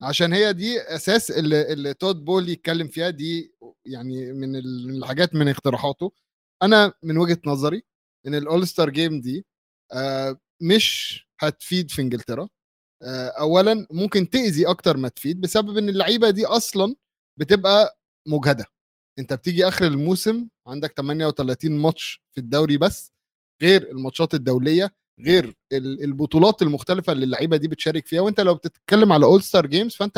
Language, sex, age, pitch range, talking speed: Arabic, male, 20-39, 140-195 Hz, 135 wpm